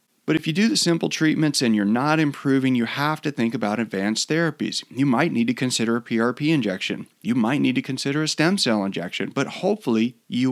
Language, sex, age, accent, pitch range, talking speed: English, male, 40-59, American, 110-150 Hz, 215 wpm